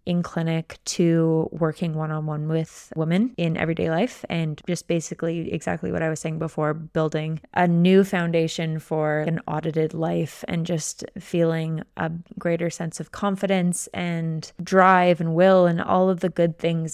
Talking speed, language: 165 wpm, English